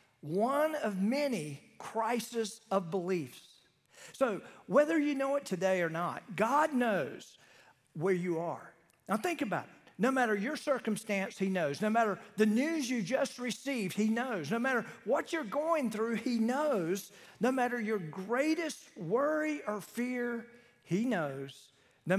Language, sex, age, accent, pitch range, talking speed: English, male, 50-69, American, 190-260 Hz, 150 wpm